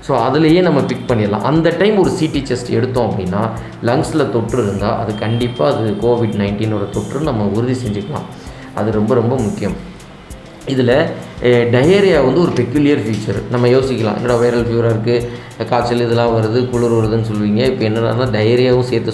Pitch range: 110-130 Hz